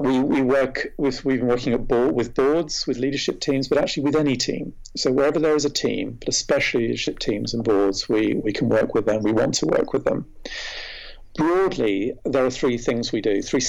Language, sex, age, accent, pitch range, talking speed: English, male, 50-69, British, 125-145 Hz, 225 wpm